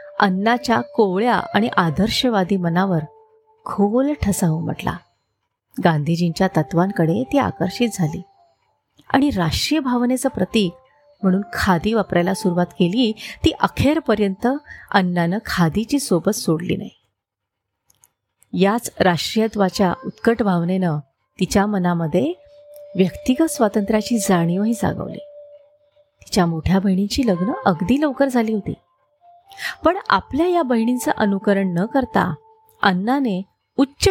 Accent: native